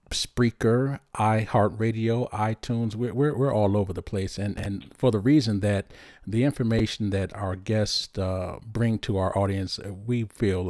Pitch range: 95-115 Hz